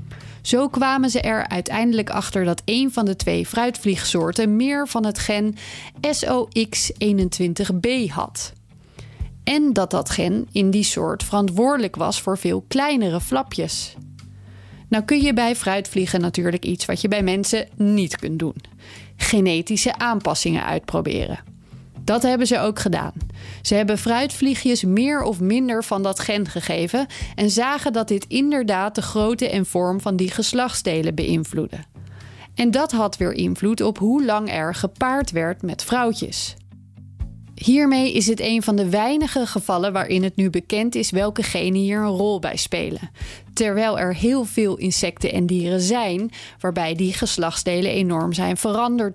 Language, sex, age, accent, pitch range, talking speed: Dutch, female, 30-49, Dutch, 175-230 Hz, 150 wpm